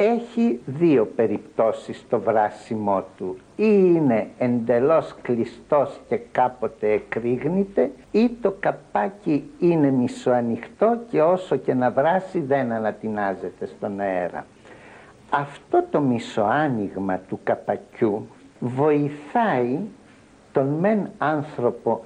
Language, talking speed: Greek, 100 wpm